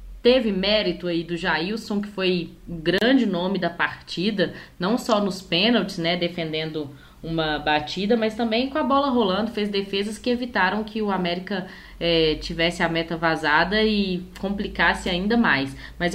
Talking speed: 155 wpm